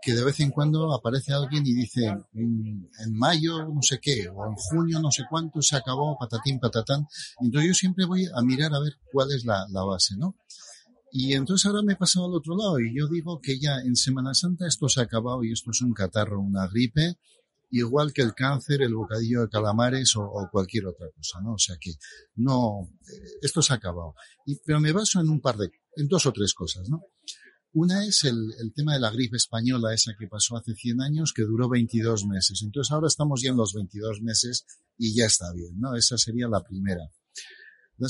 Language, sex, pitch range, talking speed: Spanish, male, 115-150 Hz, 220 wpm